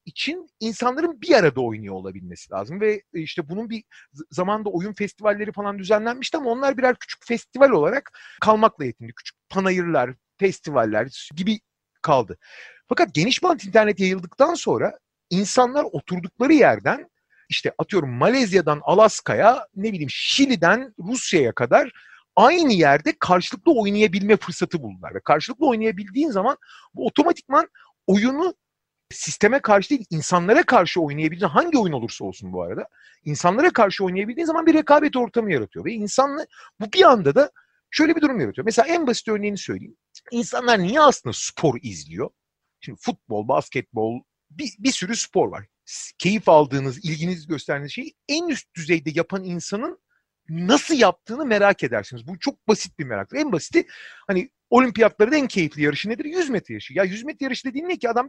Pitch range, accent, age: 175-265 Hz, native, 40-59